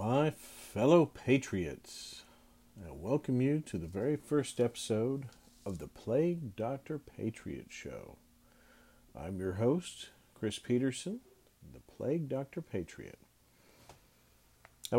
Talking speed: 110 wpm